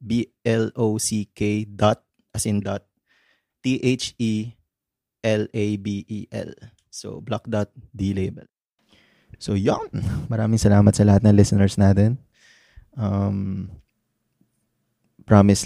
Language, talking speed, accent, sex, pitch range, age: Filipino, 80 wpm, native, male, 95-110 Hz, 20-39